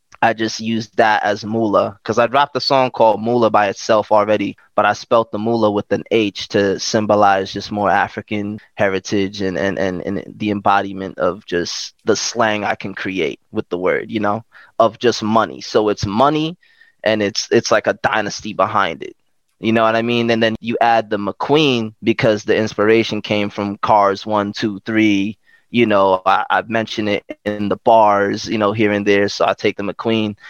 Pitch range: 100-115 Hz